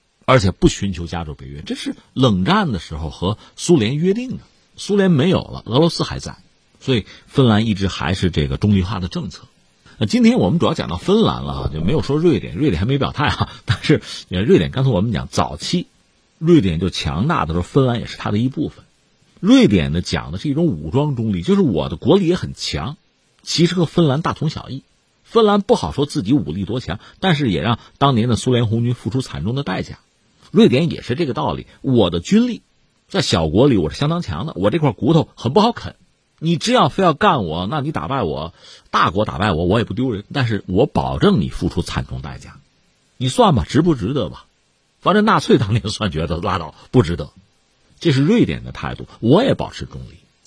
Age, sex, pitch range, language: 50-69, male, 95-155 Hz, Chinese